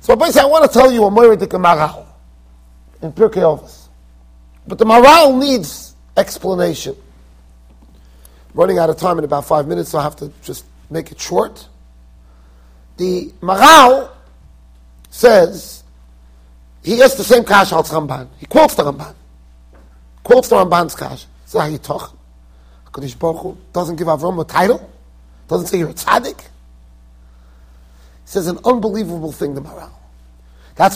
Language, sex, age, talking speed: English, male, 40-59, 140 wpm